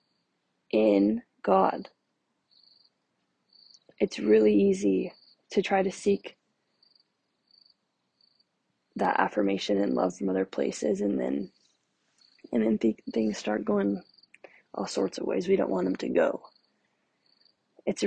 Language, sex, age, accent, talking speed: English, female, 20-39, American, 115 wpm